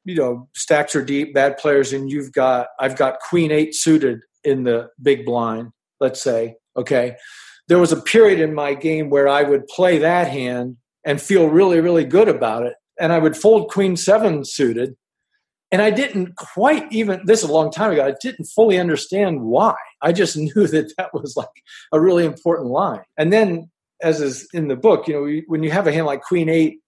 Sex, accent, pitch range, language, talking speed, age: male, American, 135-180 Hz, English, 210 wpm, 50-69